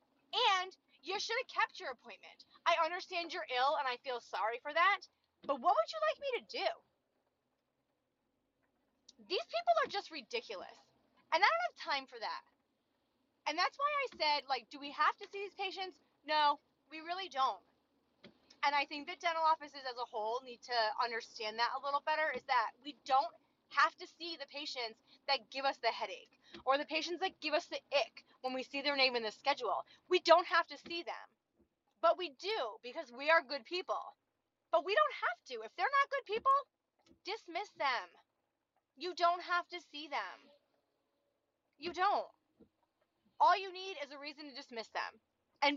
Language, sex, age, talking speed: English, female, 20-39, 190 wpm